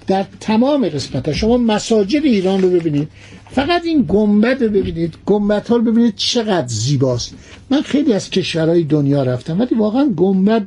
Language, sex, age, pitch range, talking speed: Persian, male, 60-79, 145-205 Hz, 150 wpm